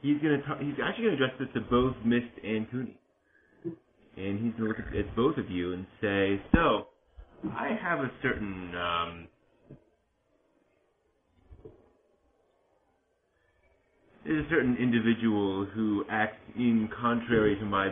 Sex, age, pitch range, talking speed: male, 30-49, 90-110 Hz, 135 wpm